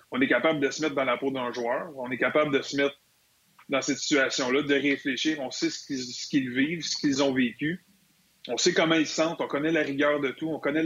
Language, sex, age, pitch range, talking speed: French, male, 30-49, 135-155 Hz, 255 wpm